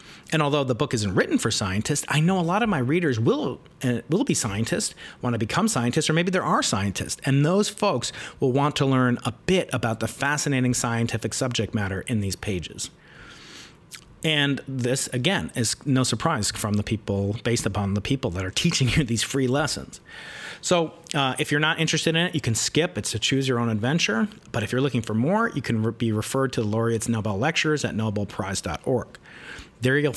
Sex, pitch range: male, 110-150 Hz